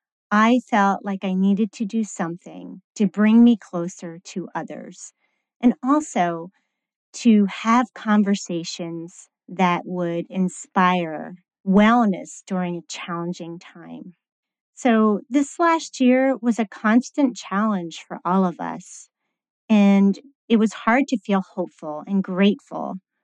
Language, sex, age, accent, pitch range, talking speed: English, female, 40-59, American, 185-240 Hz, 125 wpm